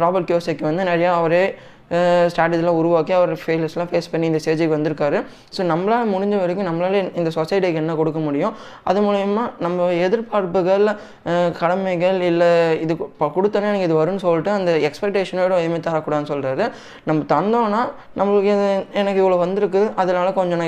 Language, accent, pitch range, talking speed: Tamil, native, 160-190 Hz, 140 wpm